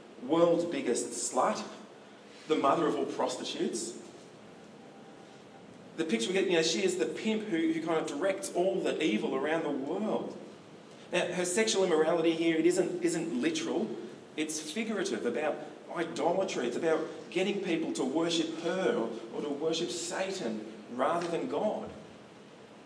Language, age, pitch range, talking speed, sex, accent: English, 40-59, 120-190 Hz, 150 wpm, male, Australian